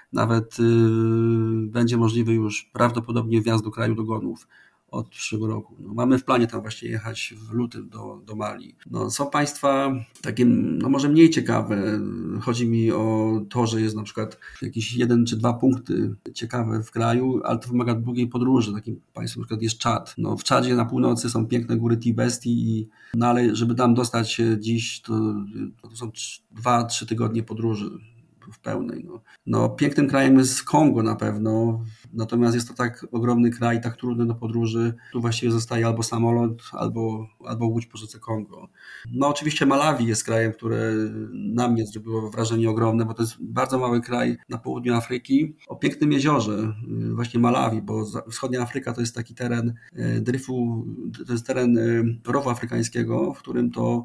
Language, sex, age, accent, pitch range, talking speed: Polish, male, 40-59, native, 115-120 Hz, 175 wpm